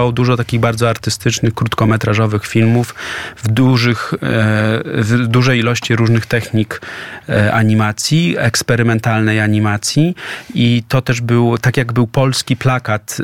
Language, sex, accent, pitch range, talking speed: Polish, male, native, 105-120 Hz, 110 wpm